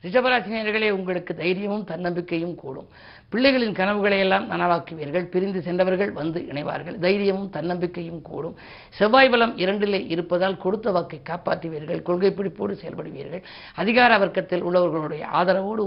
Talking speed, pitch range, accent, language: 110 wpm, 165-205 Hz, native, Tamil